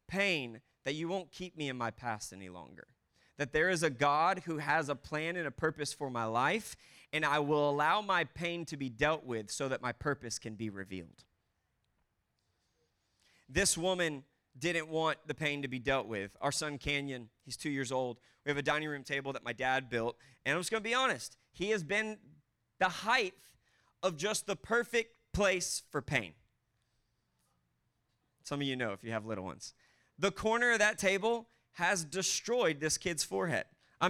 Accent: American